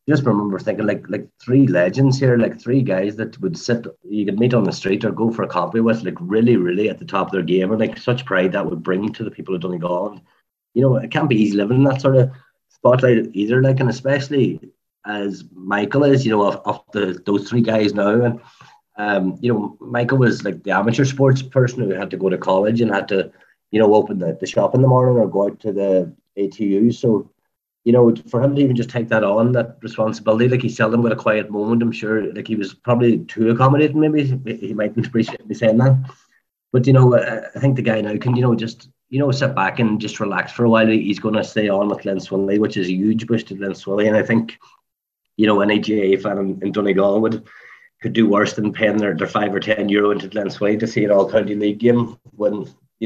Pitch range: 105-125 Hz